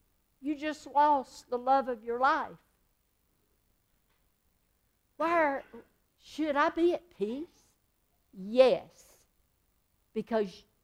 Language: English